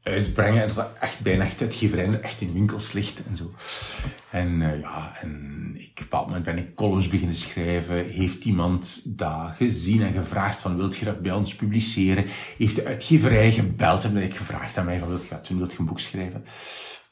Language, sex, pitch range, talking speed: Dutch, male, 95-130 Hz, 200 wpm